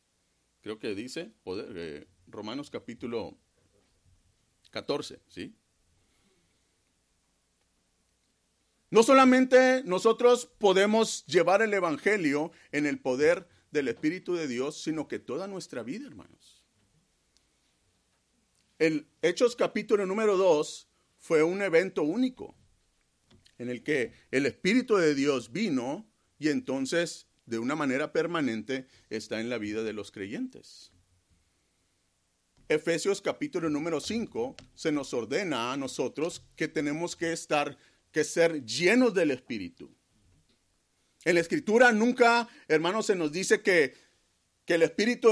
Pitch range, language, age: 150-220 Hz, Spanish, 40-59